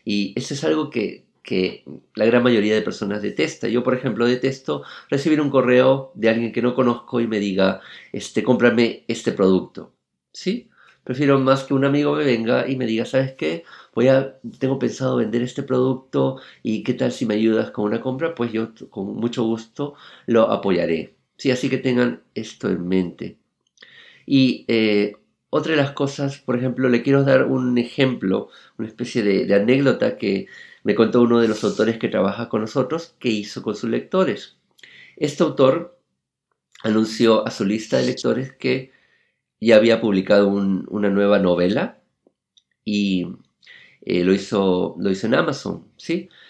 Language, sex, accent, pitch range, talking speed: English, male, Argentinian, 105-130 Hz, 170 wpm